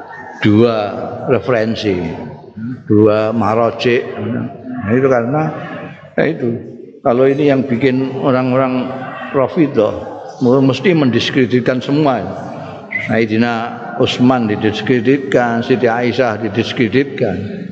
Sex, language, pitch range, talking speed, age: male, Indonesian, 120-150 Hz, 90 wpm, 60-79